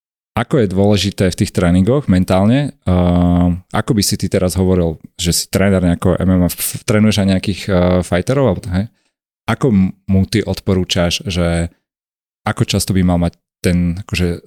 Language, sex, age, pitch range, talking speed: Slovak, male, 30-49, 90-105 Hz, 160 wpm